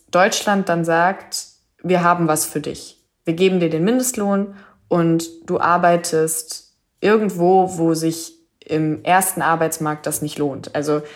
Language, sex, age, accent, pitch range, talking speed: German, female, 20-39, German, 155-180 Hz, 140 wpm